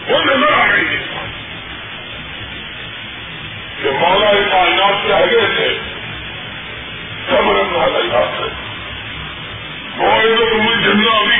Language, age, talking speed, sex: Urdu, 20-39, 65 wpm, female